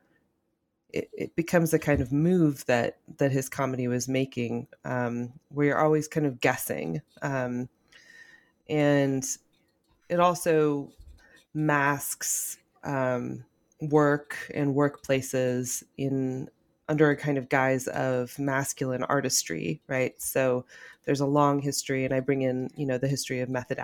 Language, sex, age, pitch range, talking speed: English, female, 20-39, 125-145 Hz, 135 wpm